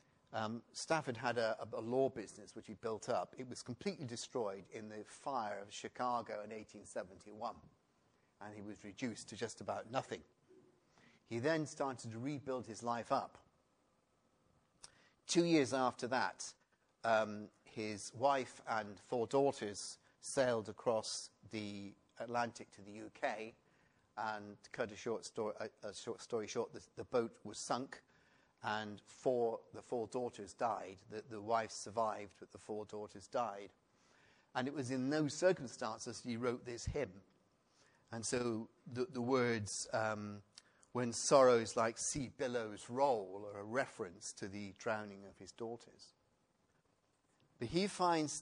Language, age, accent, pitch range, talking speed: English, 40-59, British, 105-130 Hz, 145 wpm